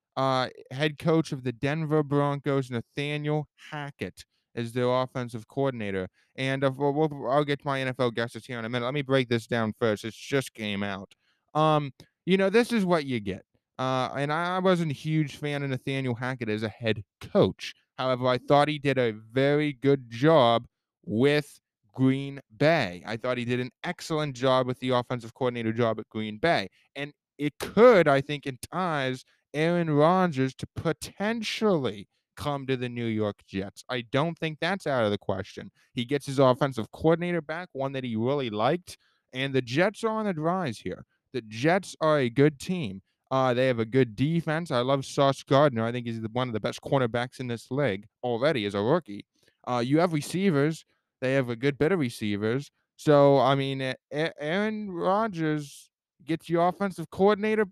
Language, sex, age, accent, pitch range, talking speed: English, male, 20-39, American, 120-155 Hz, 190 wpm